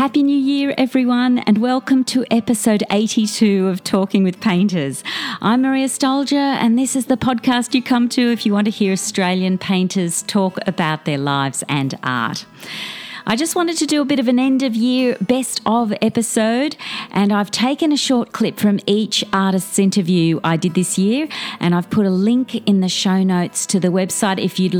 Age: 40-59